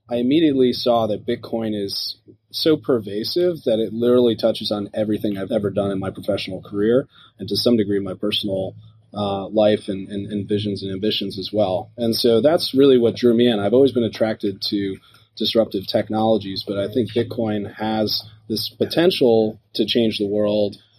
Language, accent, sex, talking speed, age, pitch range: English, American, male, 180 wpm, 30-49, 105-120 Hz